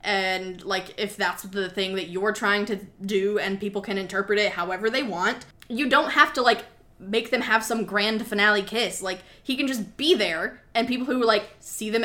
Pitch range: 195-240 Hz